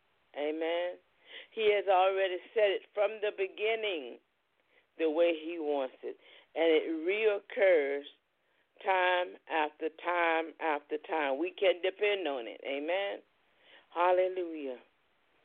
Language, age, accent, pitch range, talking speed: English, 40-59, American, 160-205 Hz, 115 wpm